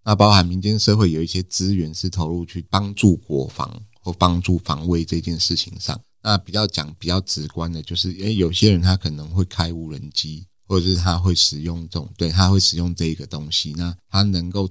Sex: male